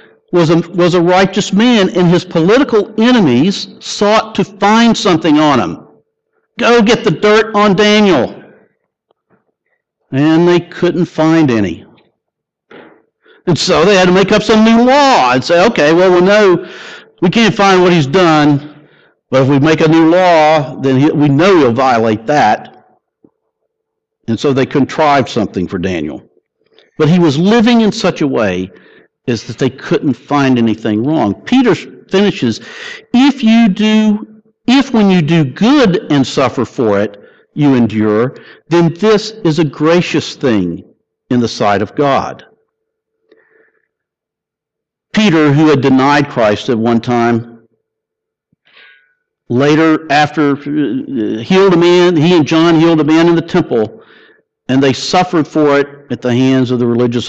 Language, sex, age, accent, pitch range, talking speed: English, male, 60-79, American, 140-215 Hz, 150 wpm